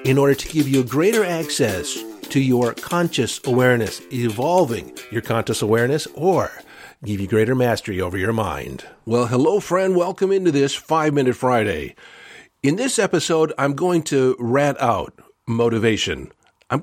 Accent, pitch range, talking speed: American, 115-145 Hz, 145 wpm